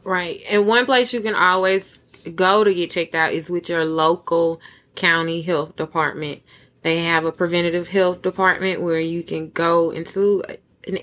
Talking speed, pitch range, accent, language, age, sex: 170 wpm, 160-185 Hz, American, English, 20-39, female